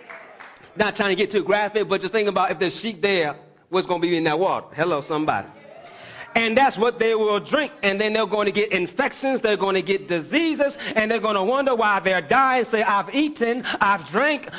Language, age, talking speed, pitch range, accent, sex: English, 30-49, 220 wpm, 160-235 Hz, American, male